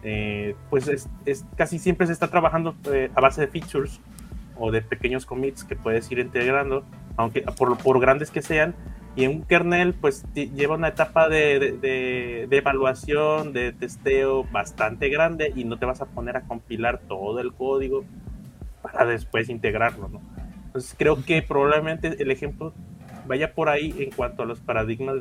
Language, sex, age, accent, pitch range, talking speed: Spanish, male, 30-49, Mexican, 120-145 Hz, 180 wpm